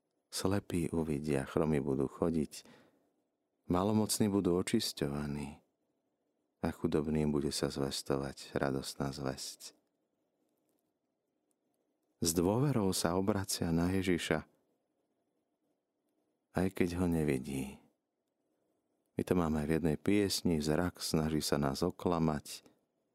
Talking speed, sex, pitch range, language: 95 wpm, male, 75-95 Hz, Slovak